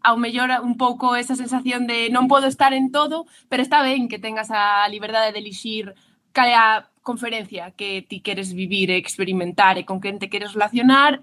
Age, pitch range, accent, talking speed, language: 20-39, 230-270 Hz, Spanish, 185 wpm, English